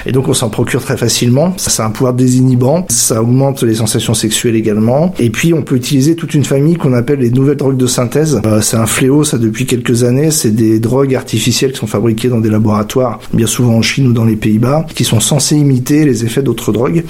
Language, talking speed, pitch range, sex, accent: French, 235 wpm, 110-135 Hz, male, French